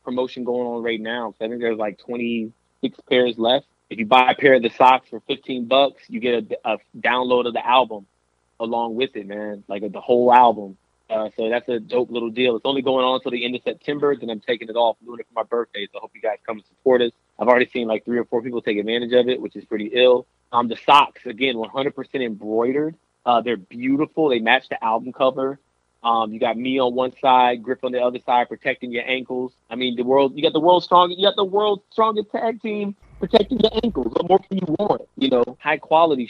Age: 30-49